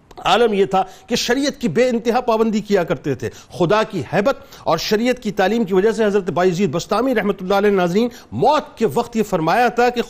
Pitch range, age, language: 180-235 Hz, 50-69, Urdu